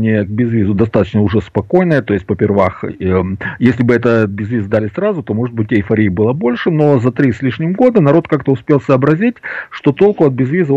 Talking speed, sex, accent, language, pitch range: 195 wpm, male, native, Russian, 105-170 Hz